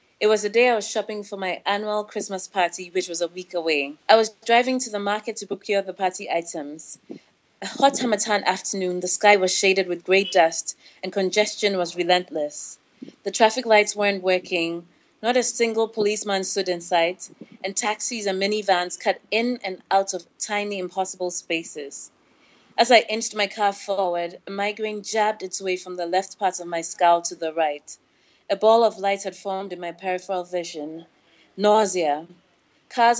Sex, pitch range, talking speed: female, 180-210 Hz, 180 wpm